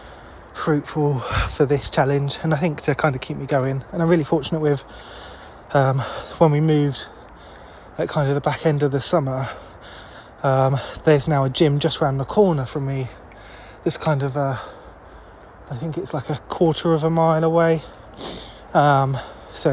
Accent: British